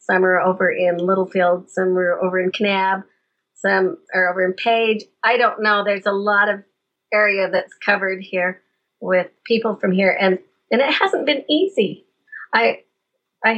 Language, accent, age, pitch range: English, American, 40-59, 190-230 Hz